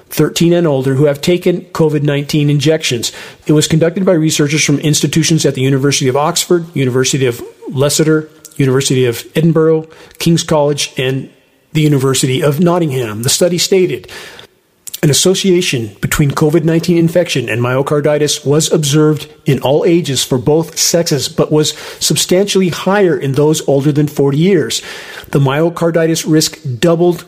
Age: 40-59